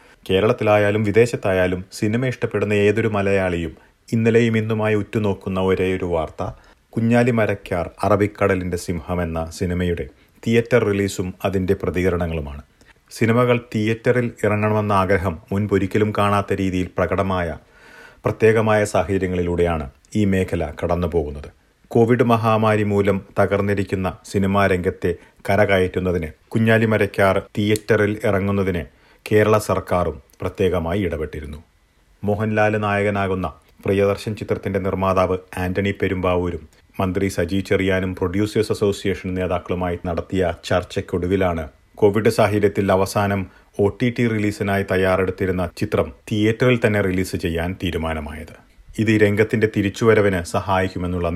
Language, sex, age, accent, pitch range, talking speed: Malayalam, male, 40-59, native, 90-105 Hz, 90 wpm